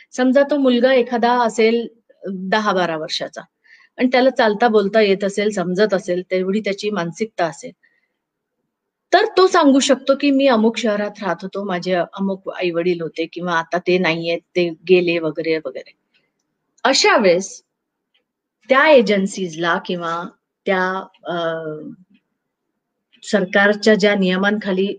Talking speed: 125 wpm